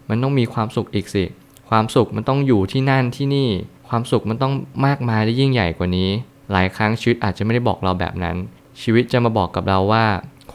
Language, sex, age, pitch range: Thai, male, 20-39, 100-120 Hz